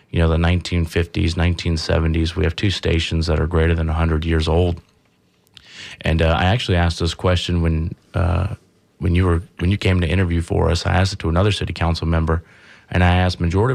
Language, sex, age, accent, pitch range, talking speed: English, male, 30-49, American, 80-95 Hz, 205 wpm